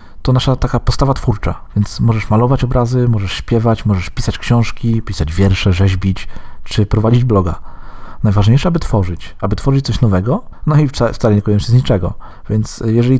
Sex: male